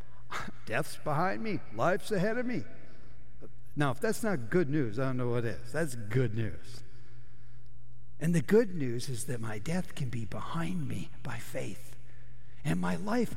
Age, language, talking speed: 60-79, English, 170 wpm